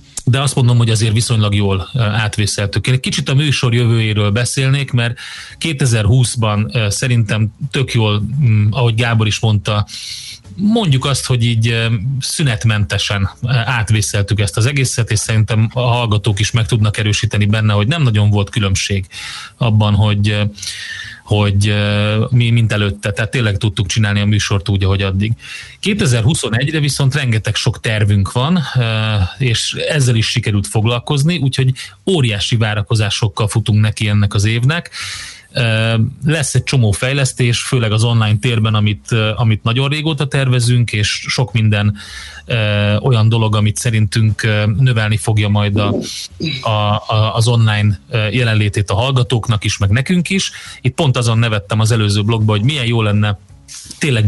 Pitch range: 105-125 Hz